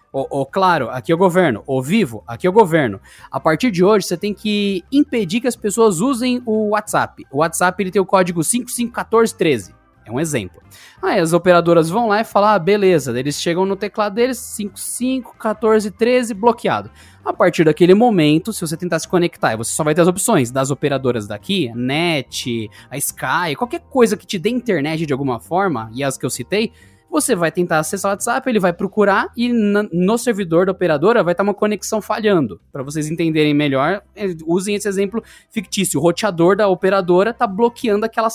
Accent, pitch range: Brazilian, 160-215 Hz